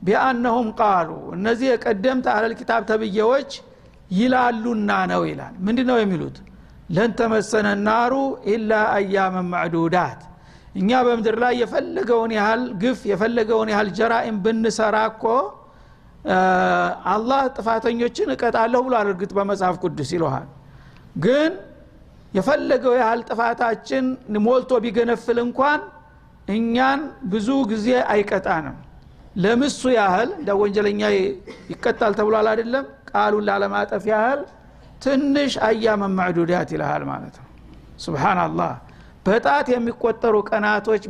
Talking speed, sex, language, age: 95 wpm, male, Amharic, 60-79